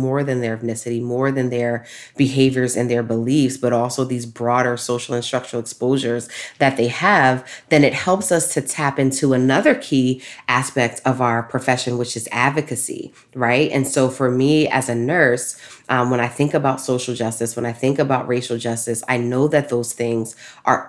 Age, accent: 20-39, American